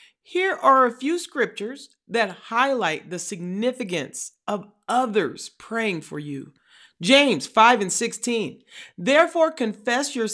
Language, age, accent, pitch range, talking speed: English, 40-59, American, 205-280 Hz, 120 wpm